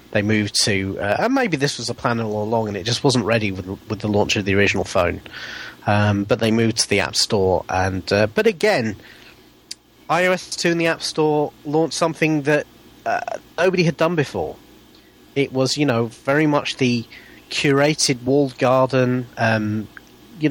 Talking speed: 185 wpm